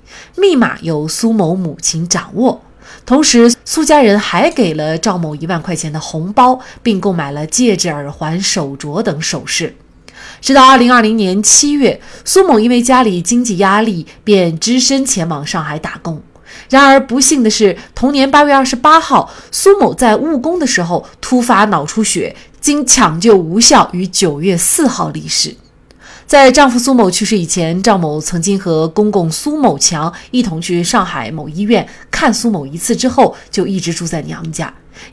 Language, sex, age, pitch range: Chinese, female, 20-39, 170-245 Hz